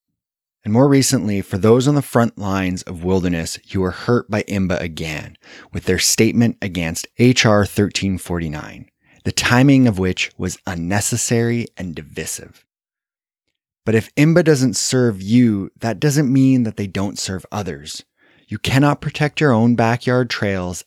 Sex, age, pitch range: male, 30-49, 95-125 Hz